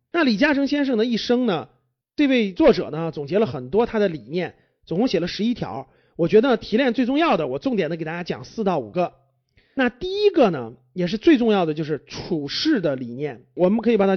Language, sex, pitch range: Chinese, male, 175-280 Hz